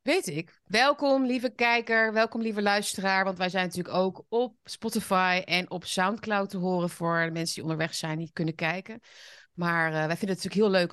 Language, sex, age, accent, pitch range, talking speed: Dutch, female, 30-49, Dutch, 170-210 Hz, 210 wpm